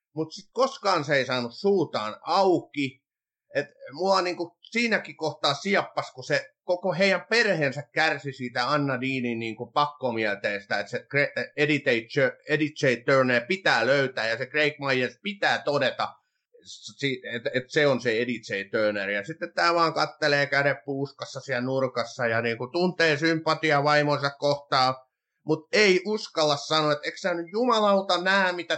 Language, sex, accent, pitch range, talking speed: Finnish, male, native, 135-180 Hz, 150 wpm